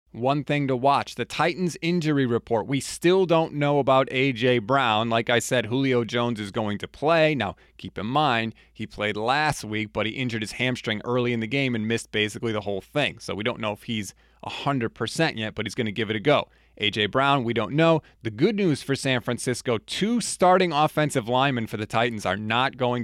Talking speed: 220 wpm